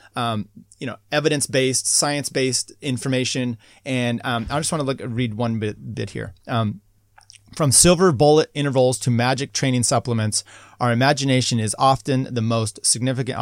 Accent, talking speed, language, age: American, 150 wpm, English, 30-49